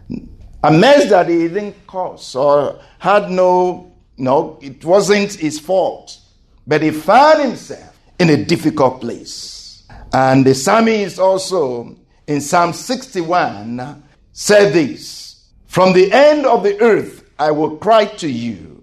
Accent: Nigerian